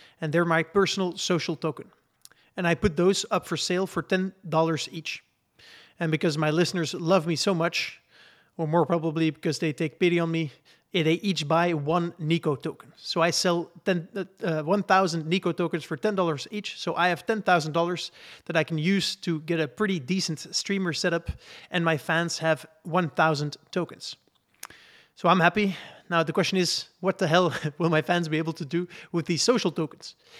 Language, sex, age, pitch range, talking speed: English, male, 30-49, 160-185 Hz, 180 wpm